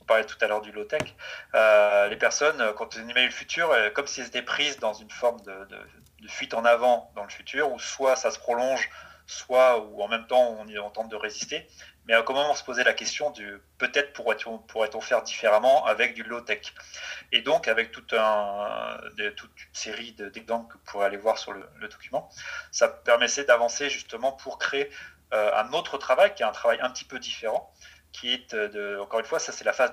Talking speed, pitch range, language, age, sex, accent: 225 wpm, 105-125 Hz, French, 30-49, male, French